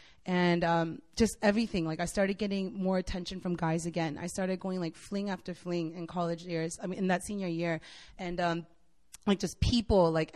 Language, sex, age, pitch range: English, female, 20-39, 170-220 Hz